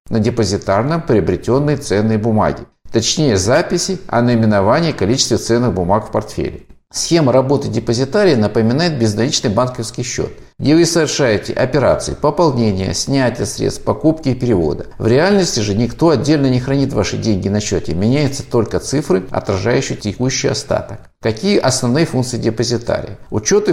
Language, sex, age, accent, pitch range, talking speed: Russian, male, 50-69, native, 115-150 Hz, 135 wpm